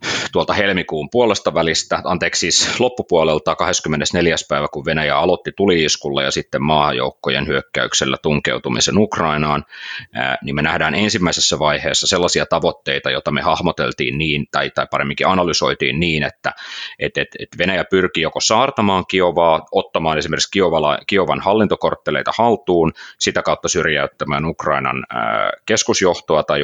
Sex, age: male, 30-49